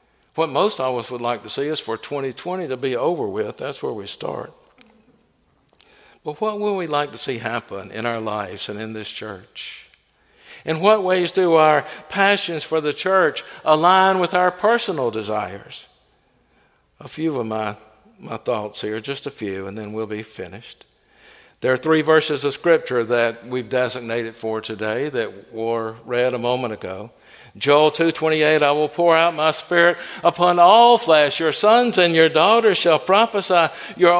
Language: English